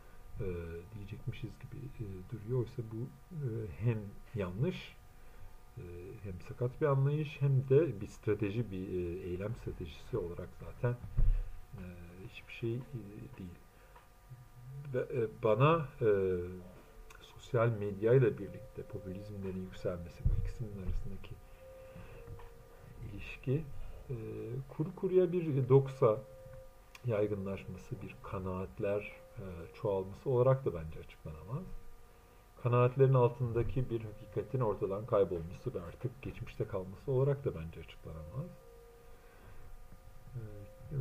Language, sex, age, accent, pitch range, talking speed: Turkish, male, 50-69, native, 95-125 Hz, 105 wpm